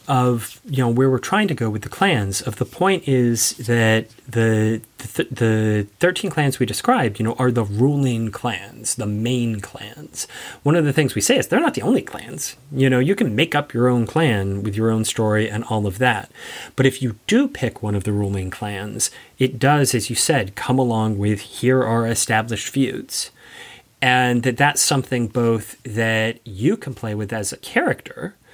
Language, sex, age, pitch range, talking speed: English, male, 30-49, 110-140 Hz, 200 wpm